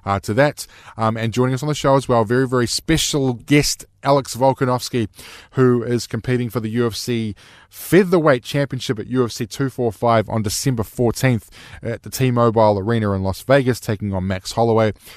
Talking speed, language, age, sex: 170 wpm, English, 20-39, male